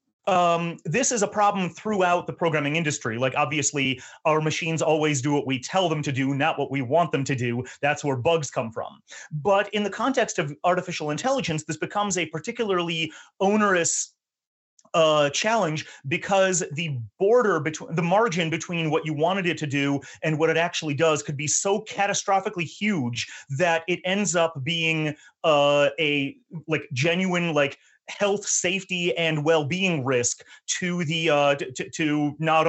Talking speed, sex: 165 wpm, male